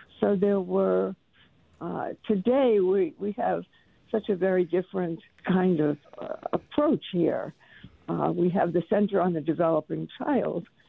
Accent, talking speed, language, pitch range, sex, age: American, 145 wpm, English, 180-230 Hz, female, 60-79